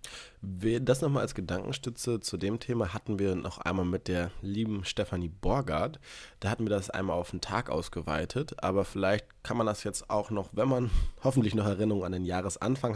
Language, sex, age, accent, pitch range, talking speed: German, male, 20-39, German, 100-120 Hz, 190 wpm